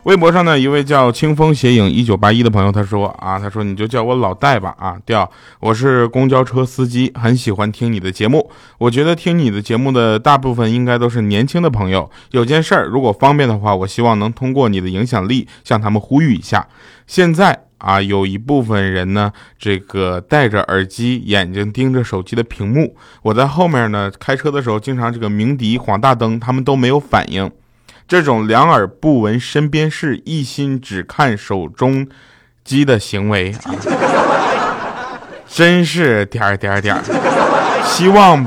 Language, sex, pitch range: Chinese, male, 100-135 Hz